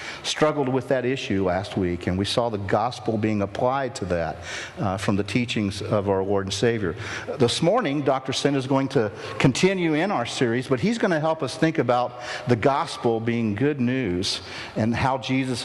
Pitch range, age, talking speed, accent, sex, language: 110-135 Hz, 50-69, 195 wpm, American, male, English